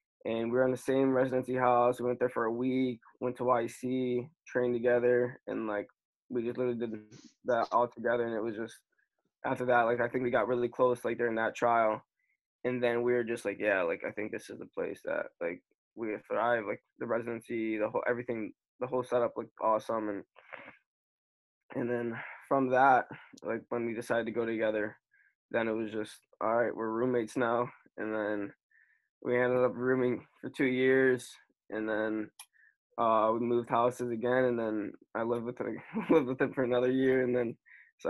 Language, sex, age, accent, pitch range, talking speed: English, male, 20-39, American, 115-125 Hz, 200 wpm